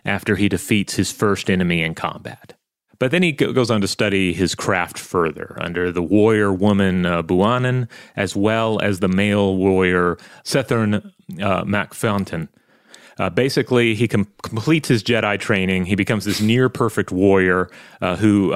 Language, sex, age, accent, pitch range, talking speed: English, male, 30-49, American, 95-115 Hz, 150 wpm